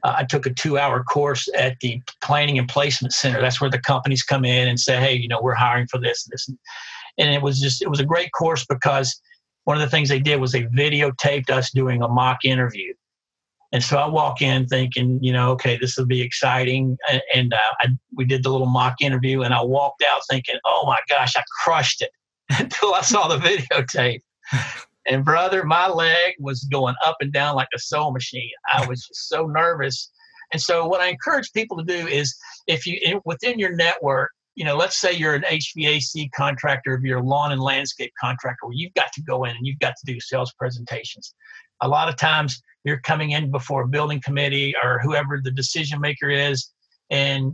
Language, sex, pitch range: English, male, 130-155 Hz